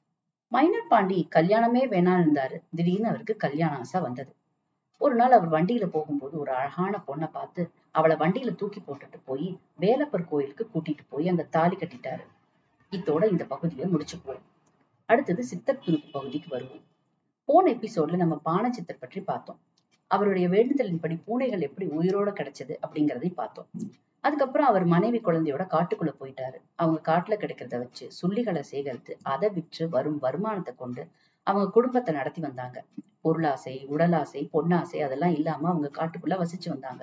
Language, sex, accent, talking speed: Tamil, female, native, 140 wpm